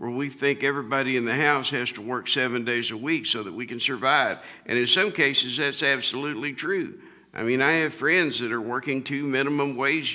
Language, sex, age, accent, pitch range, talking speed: English, male, 50-69, American, 130-160 Hz, 220 wpm